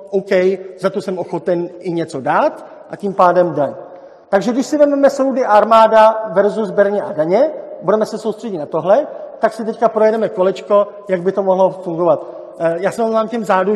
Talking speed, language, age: 185 wpm, Czech, 50-69